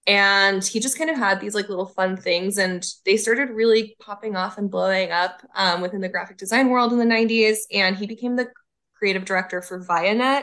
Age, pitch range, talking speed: 20-39, 185-215 Hz, 215 wpm